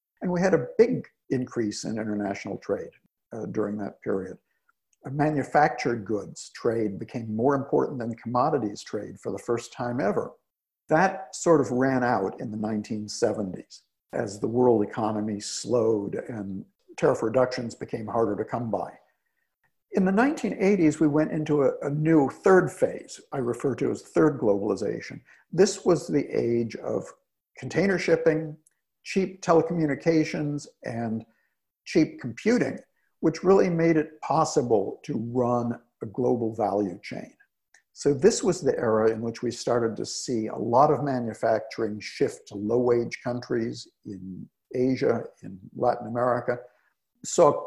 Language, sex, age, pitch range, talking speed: English, male, 60-79, 110-155 Hz, 145 wpm